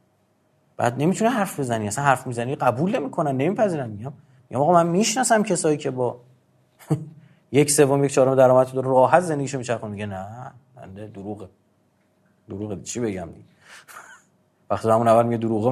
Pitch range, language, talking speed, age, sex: 110-145 Hz, Persian, 155 wpm, 30-49, male